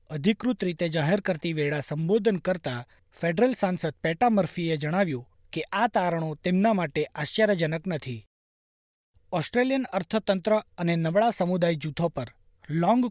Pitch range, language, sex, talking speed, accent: 150-200 Hz, Gujarati, male, 120 wpm, native